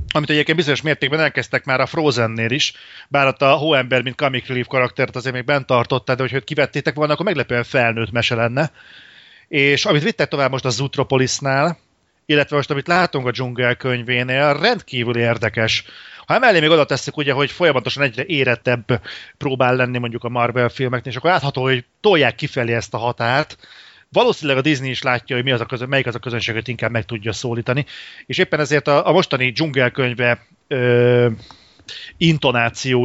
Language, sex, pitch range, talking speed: Hungarian, male, 125-145 Hz, 165 wpm